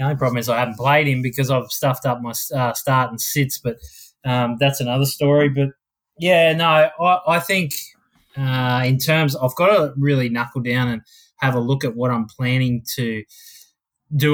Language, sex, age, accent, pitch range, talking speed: English, male, 20-39, Australian, 120-135 Hz, 195 wpm